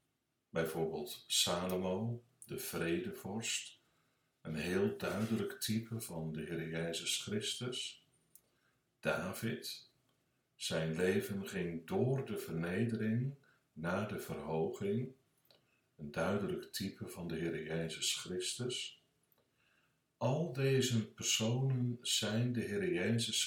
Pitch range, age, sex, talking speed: 85-125 Hz, 60-79, male, 95 wpm